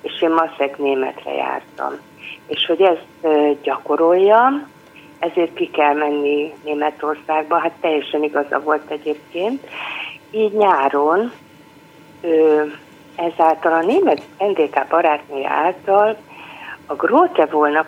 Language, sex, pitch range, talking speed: Hungarian, female, 145-170 Hz, 105 wpm